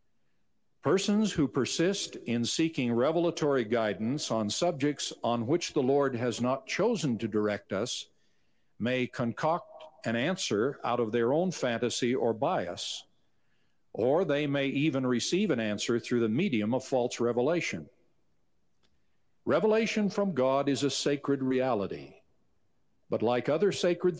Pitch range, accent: 115-150 Hz, American